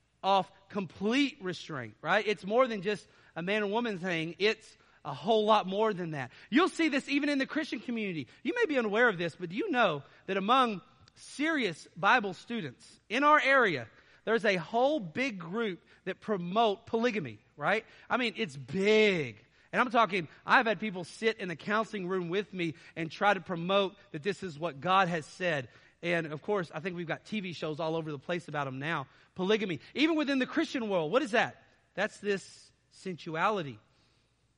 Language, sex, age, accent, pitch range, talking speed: English, male, 40-59, American, 165-215 Hz, 190 wpm